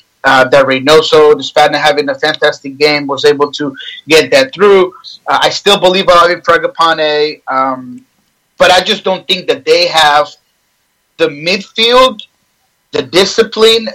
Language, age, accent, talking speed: English, 30-49, American, 140 wpm